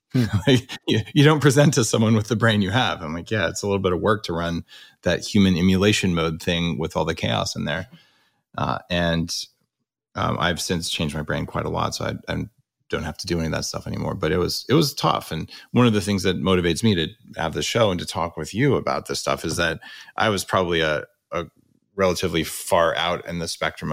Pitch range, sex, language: 90-125 Hz, male, English